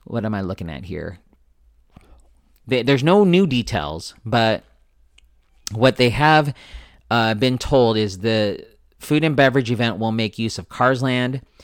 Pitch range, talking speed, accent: 95-125 Hz, 155 wpm, American